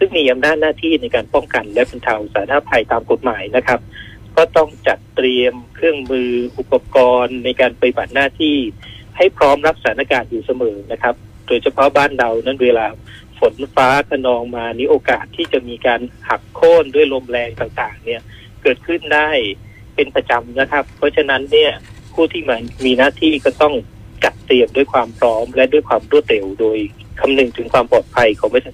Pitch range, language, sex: 120-180 Hz, Thai, male